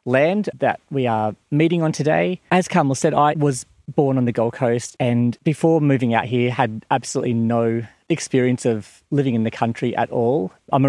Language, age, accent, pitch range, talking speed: English, 30-49, Australian, 115-135 Hz, 195 wpm